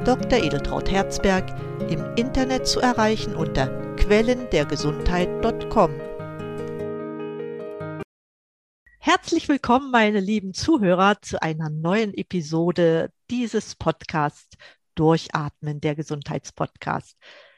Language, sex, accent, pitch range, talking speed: German, female, German, 155-200 Hz, 80 wpm